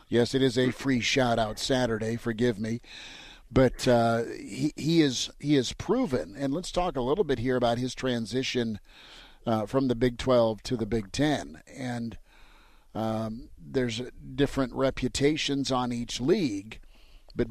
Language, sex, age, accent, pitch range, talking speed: English, male, 50-69, American, 115-135 Hz, 160 wpm